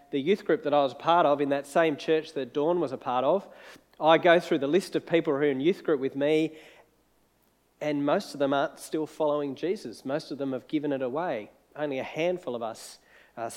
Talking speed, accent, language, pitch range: 240 wpm, Australian, English, 145-190 Hz